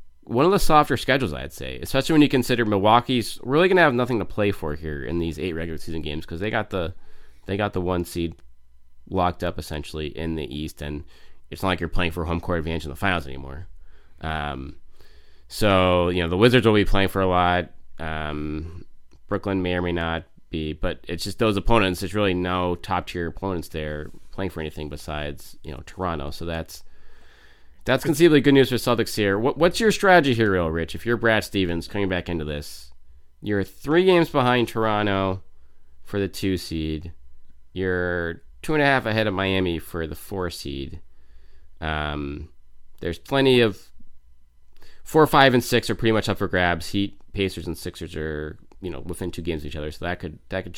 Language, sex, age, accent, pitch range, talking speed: English, male, 20-39, American, 75-110 Hz, 200 wpm